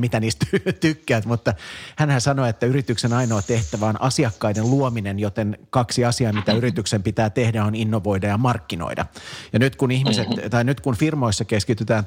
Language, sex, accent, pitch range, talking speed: Finnish, male, native, 105-120 Hz, 165 wpm